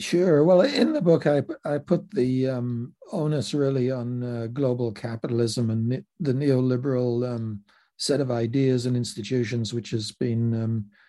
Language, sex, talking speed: English, male, 155 wpm